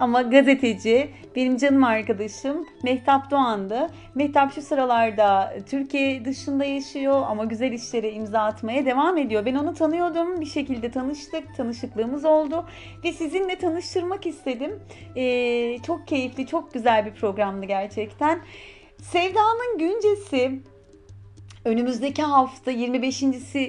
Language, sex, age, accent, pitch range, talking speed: Turkish, female, 40-59, native, 230-295 Hz, 115 wpm